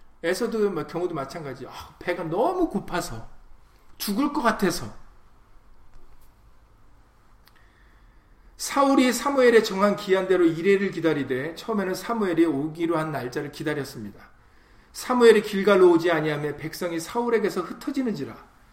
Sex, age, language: male, 40-59, Korean